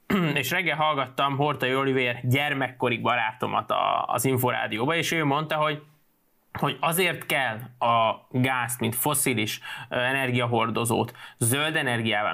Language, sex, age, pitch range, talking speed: Hungarian, male, 20-39, 125-145 Hz, 110 wpm